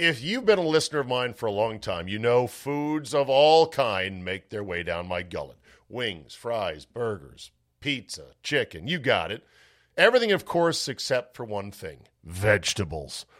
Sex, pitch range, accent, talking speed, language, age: male, 115-160 Hz, American, 175 wpm, English, 50-69